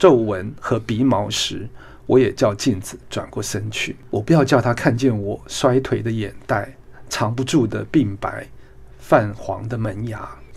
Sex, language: male, Chinese